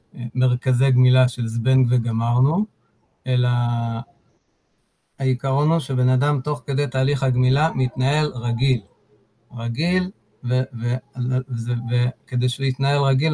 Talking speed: 110 wpm